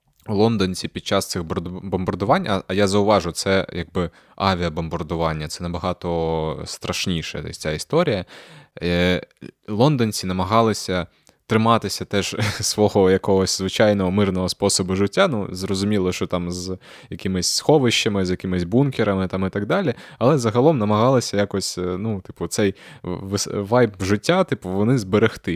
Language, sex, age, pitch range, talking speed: Ukrainian, male, 20-39, 90-110 Hz, 120 wpm